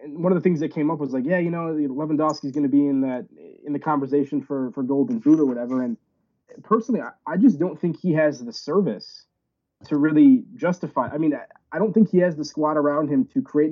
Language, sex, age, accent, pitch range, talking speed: English, male, 20-39, American, 140-210 Hz, 245 wpm